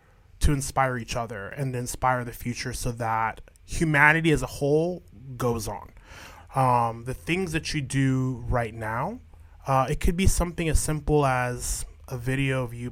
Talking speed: 165 wpm